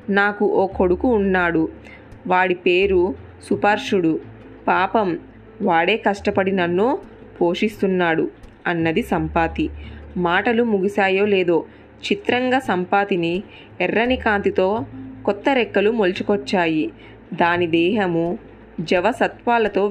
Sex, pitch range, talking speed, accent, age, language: female, 170-210 Hz, 80 wpm, native, 20-39, Telugu